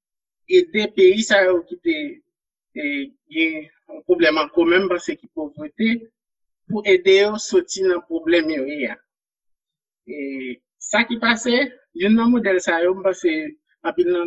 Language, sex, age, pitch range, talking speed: French, male, 50-69, 170-255 Hz, 150 wpm